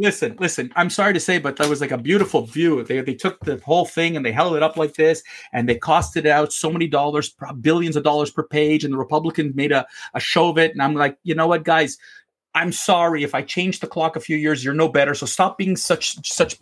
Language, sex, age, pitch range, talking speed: English, male, 40-59, 150-220 Hz, 265 wpm